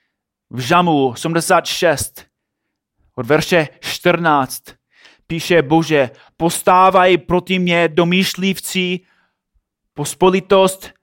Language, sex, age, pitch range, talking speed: Czech, male, 30-49, 150-205 Hz, 70 wpm